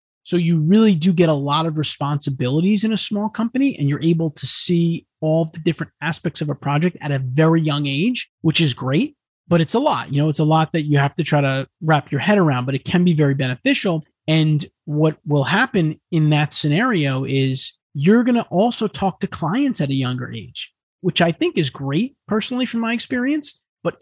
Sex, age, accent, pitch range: male, 30-49, American, 140-175 Hz